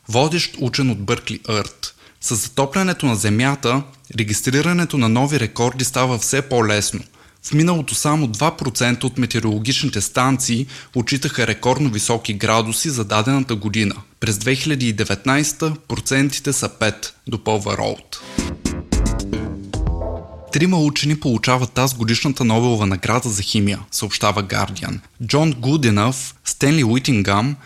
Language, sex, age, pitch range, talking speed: Bulgarian, male, 20-39, 110-140 Hz, 115 wpm